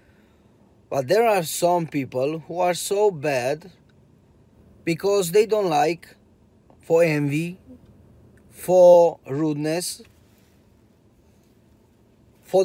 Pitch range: 110-155 Hz